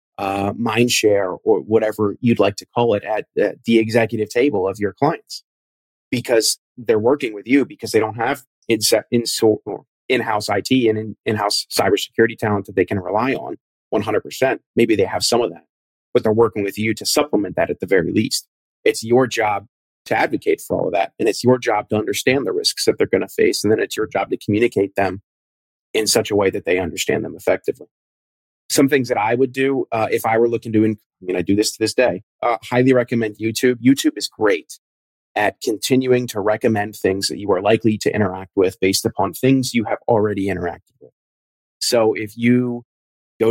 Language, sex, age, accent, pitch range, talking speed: English, male, 30-49, American, 100-120 Hz, 205 wpm